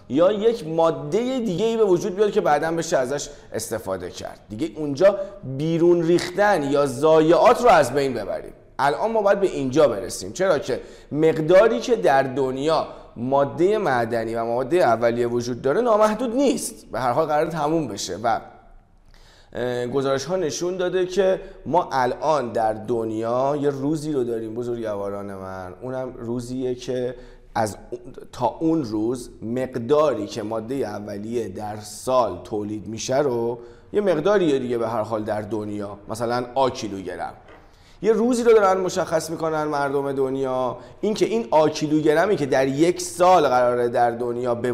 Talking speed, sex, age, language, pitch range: 155 wpm, male, 30-49, Persian, 120-175 Hz